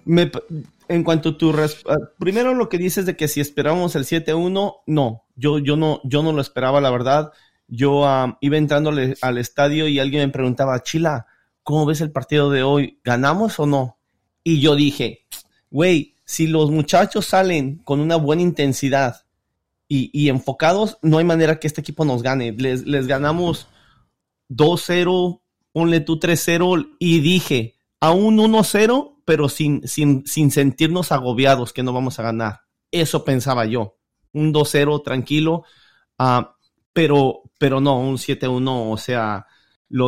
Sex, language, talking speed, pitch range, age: male, Spanish, 160 wpm, 130-160 Hz, 30-49